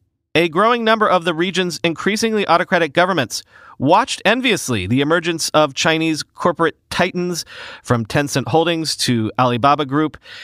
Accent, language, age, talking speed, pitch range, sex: American, English, 40-59, 130 wpm, 140-185 Hz, male